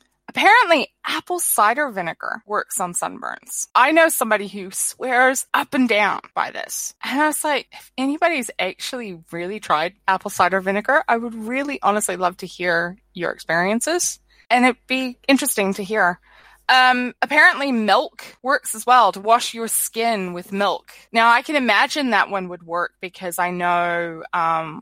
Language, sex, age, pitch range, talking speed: English, female, 20-39, 175-255 Hz, 165 wpm